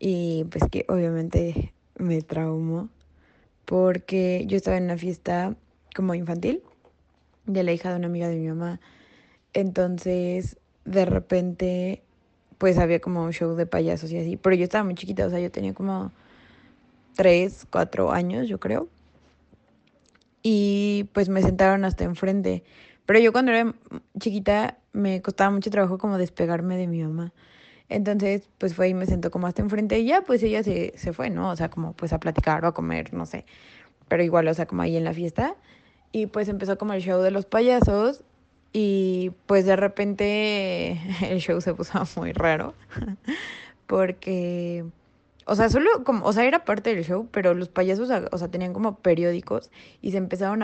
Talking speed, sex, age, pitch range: 175 wpm, female, 20-39, 170-200 Hz